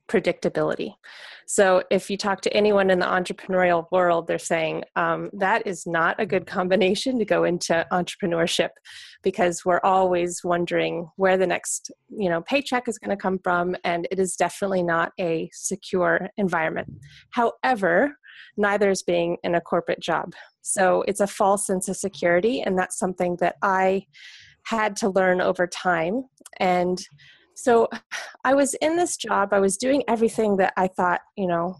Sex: female